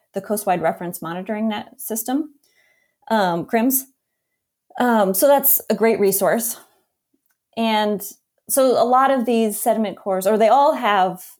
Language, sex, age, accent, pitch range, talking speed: English, female, 30-49, American, 190-235 Hz, 135 wpm